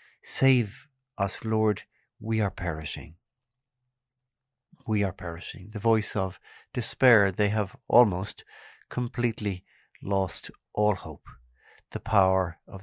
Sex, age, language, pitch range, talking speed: male, 50-69, English, 95-120 Hz, 110 wpm